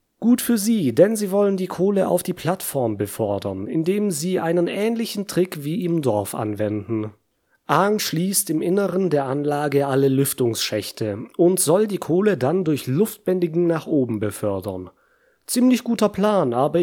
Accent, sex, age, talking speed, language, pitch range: German, male, 30-49, 155 wpm, German, 130-185 Hz